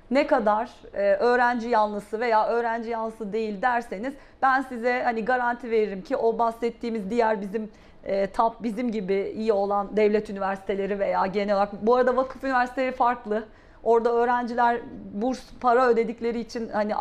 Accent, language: native, Turkish